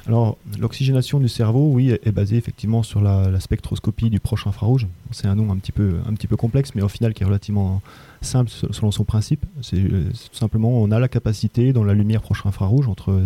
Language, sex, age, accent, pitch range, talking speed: French, male, 30-49, French, 100-115 Hz, 220 wpm